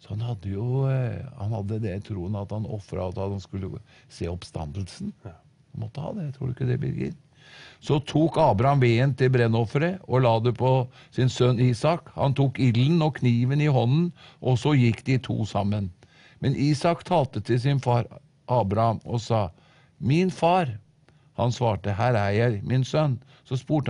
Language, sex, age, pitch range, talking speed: English, male, 50-69, 105-140 Hz, 170 wpm